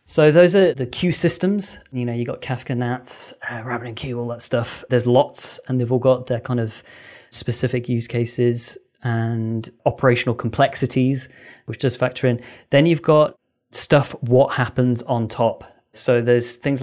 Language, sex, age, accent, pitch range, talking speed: English, male, 30-49, British, 120-135 Hz, 175 wpm